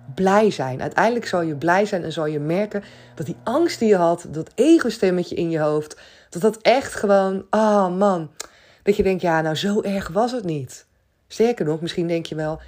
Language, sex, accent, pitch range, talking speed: Dutch, female, Dutch, 155-205 Hz, 220 wpm